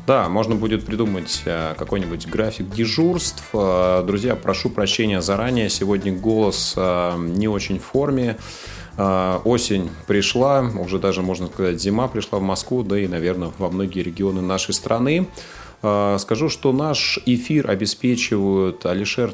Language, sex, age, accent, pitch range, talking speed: Russian, male, 30-49, native, 95-115 Hz, 125 wpm